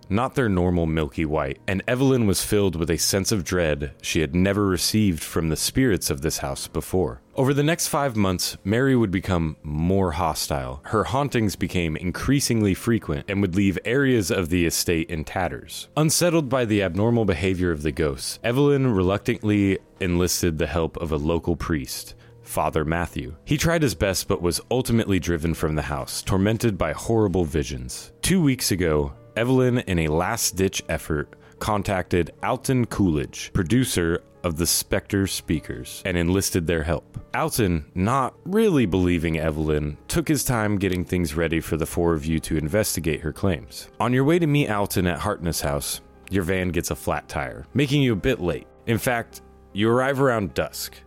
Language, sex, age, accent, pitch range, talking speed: English, male, 30-49, American, 85-115 Hz, 175 wpm